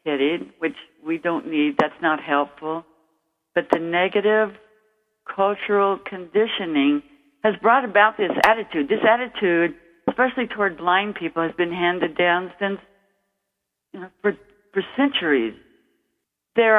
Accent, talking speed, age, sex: American, 120 wpm, 60-79, female